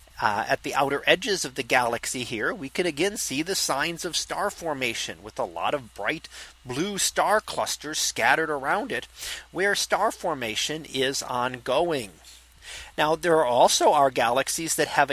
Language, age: English, 40-59